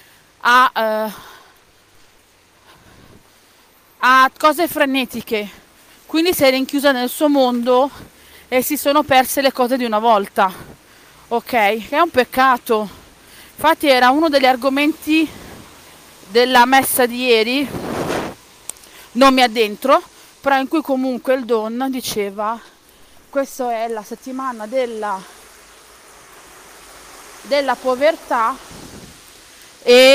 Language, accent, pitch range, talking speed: Italian, native, 235-305 Hz, 105 wpm